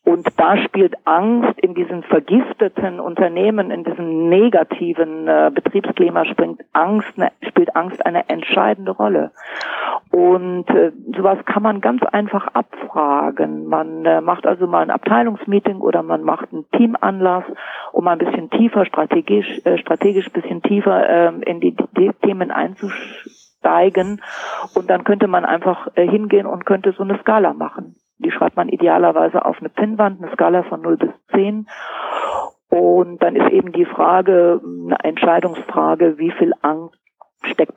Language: German